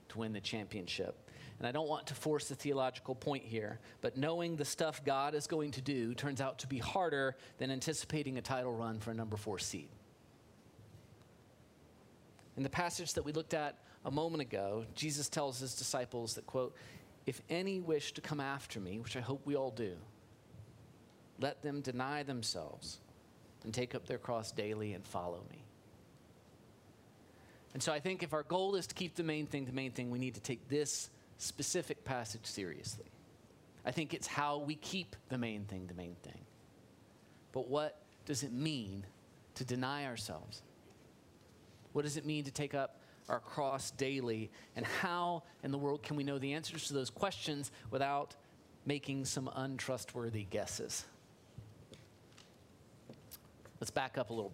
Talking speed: 175 wpm